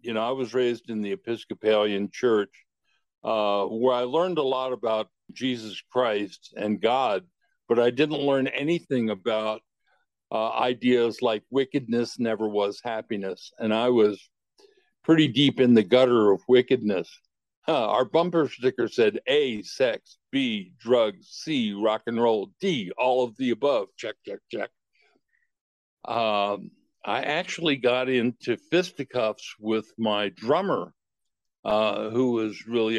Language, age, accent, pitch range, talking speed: English, 60-79, American, 105-135 Hz, 140 wpm